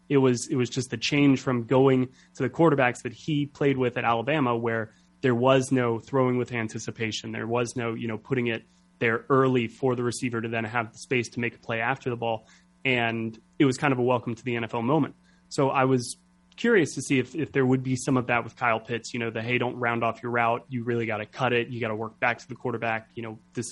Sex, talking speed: male, 255 wpm